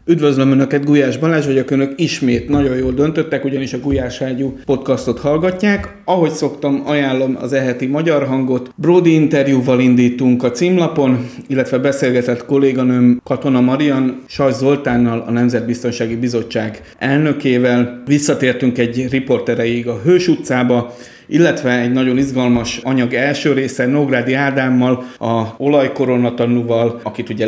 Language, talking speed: Hungarian, 130 wpm